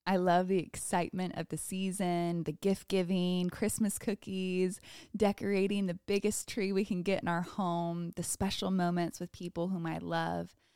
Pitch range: 170-195 Hz